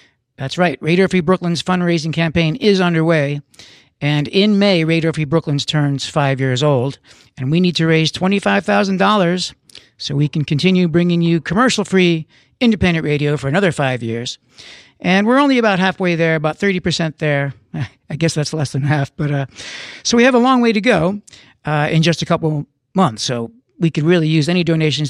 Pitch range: 140-185 Hz